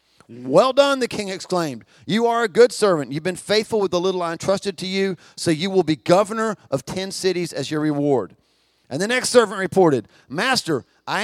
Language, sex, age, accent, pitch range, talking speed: English, male, 40-59, American, 155-215 Hz, 205 wpm